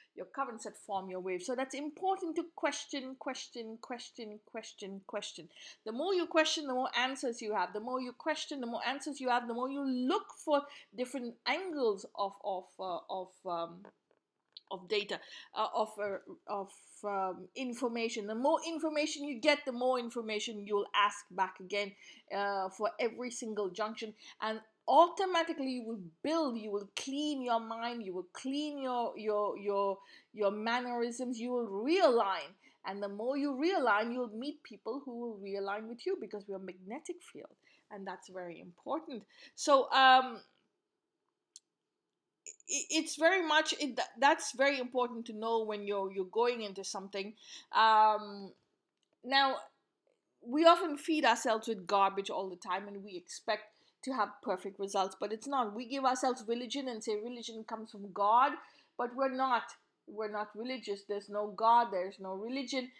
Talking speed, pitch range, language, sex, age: 165 wpm, 205-280 Hz, English, female, 50-69